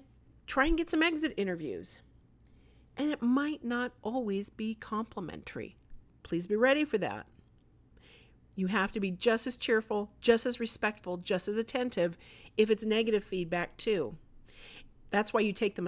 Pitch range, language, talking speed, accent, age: 185-250 Hz, English, 155 wpm, American, 50-69